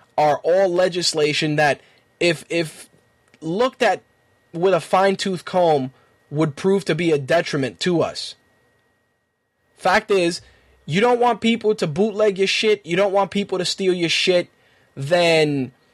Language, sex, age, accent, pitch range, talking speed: English, male, 20-39, American, 155-195 Hz, 145 wpm